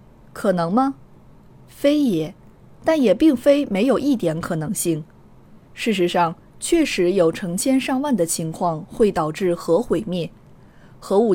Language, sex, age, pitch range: Chinese, female, 20-39, 175-240 Hz